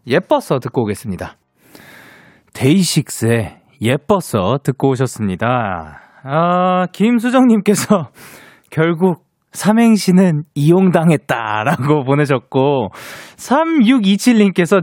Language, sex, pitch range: Korean, male, 150-235 Hz